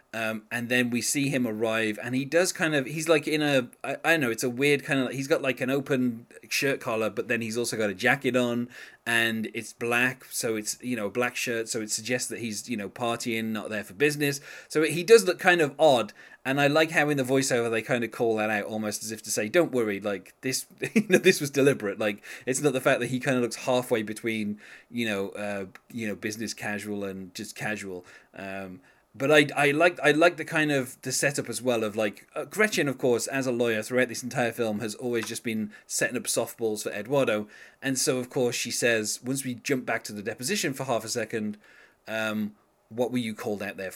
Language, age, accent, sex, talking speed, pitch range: English, 20-39, British, male, 240 wpm, 110-140 Hz